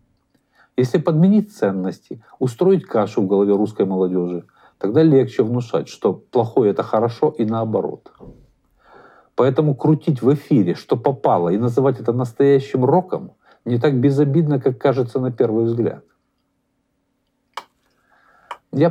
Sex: male